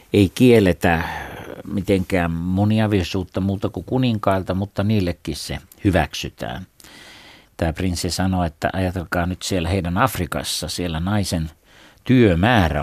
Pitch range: 85-100 Hz